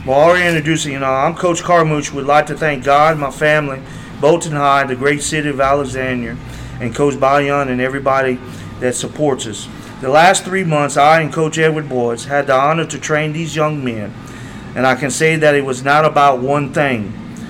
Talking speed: 200 wpm